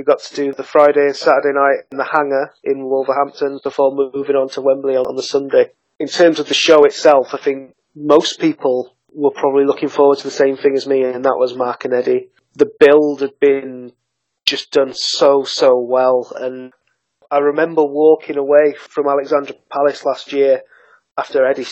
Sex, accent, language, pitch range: male, British, English, 140-160 Hz